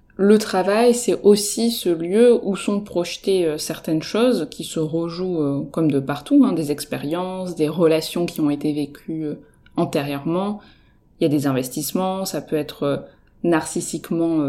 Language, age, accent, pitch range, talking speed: French, 20-39, French, 155-195 Hz, 150 wpm